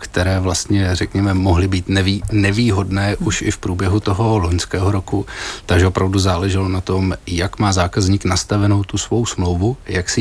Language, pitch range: Czech, 95-105 Hz